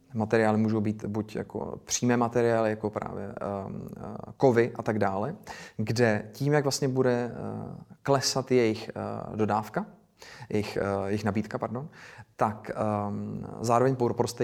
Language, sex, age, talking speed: Czech, male, 30-49, 115 wpm